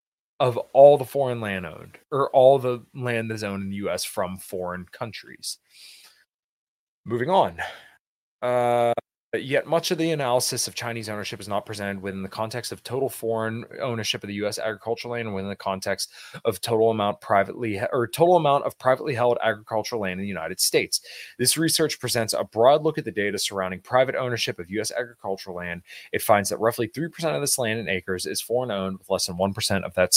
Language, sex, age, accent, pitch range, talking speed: English, male, 20-39, American, 95-130 Hz, 205 wpm